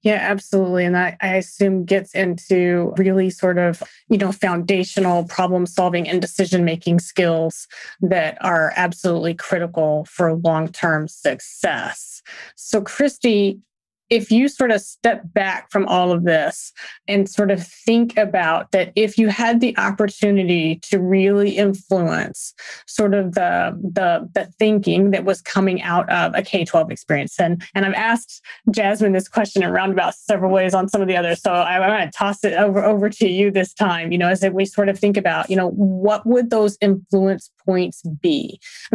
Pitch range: 180-205 Hz